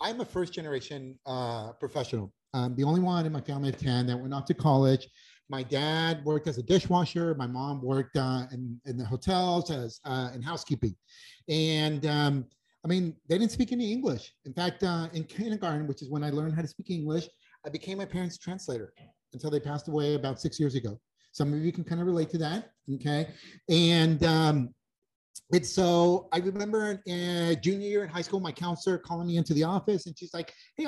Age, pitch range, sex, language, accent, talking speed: 30-49, 140-180 Hz, male, English, American, 210 wpm